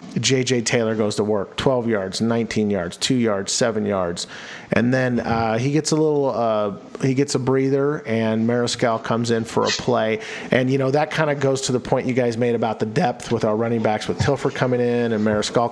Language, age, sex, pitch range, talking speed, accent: English, 40-59, male, 105-135 Hz, 225 wpm, American